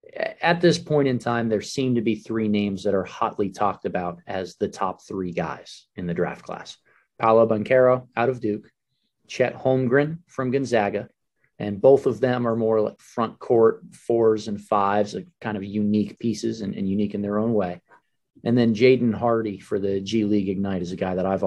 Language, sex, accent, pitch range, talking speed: English, male, American, 100-125 Hz, 200 wpm